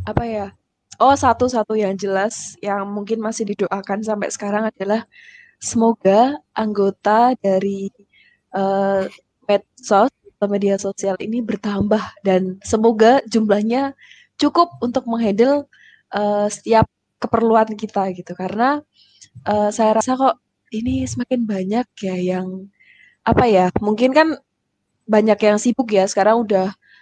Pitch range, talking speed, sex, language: 195-230 Hz, 120 wpm, female, Indonesian